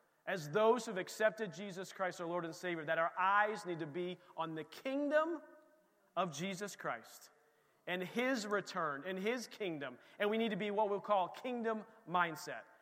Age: 40-59